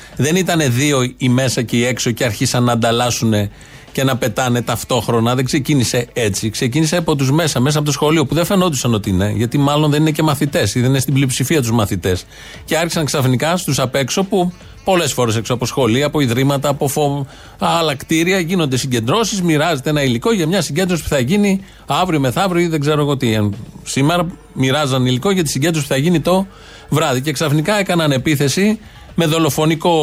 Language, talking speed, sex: Greek, 190 wpm, male